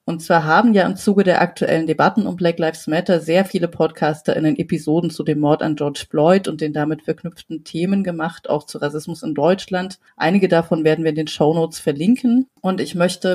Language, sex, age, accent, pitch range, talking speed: German, female, 30-49, German, 160-190 Hz, 215 wpm